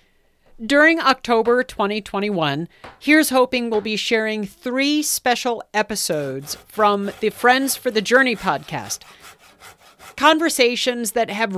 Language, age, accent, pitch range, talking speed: English, 40-59, American, 190-260 Hz, 110 wpm